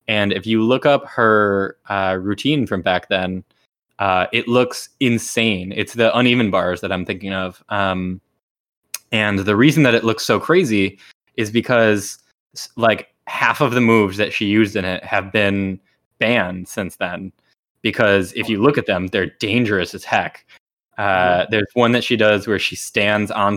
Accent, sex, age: American, male, 10-29